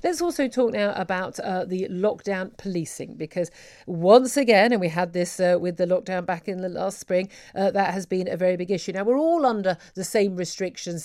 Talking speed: 215 wpm